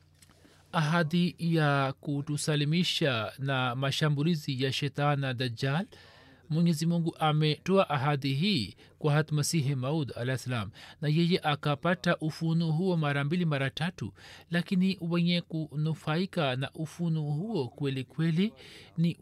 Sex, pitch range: male, 130-165 Hz